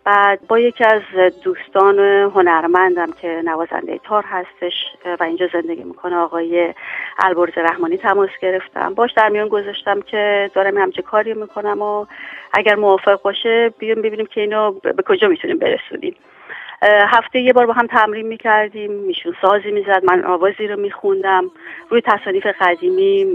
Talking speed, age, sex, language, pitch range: 145 wpm, 40-59, female, Persian, 175-215 Hz